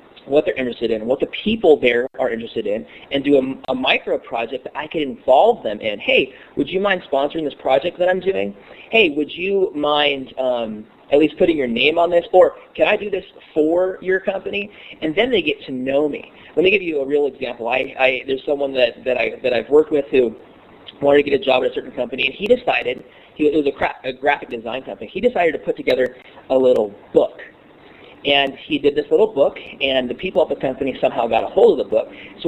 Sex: male